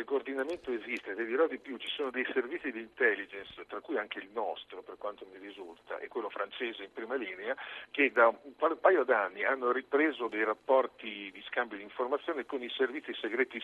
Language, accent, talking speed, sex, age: Italian, native, 200 wpm, male, 50-69